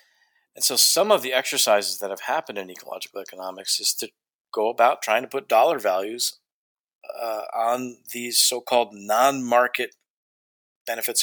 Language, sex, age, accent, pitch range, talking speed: English, male, 40-59, American, 100-135 Hz, 145 wpm